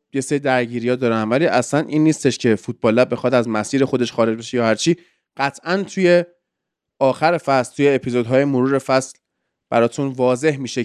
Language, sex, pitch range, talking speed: Persian, male, 115-155 Hz, 155 wpm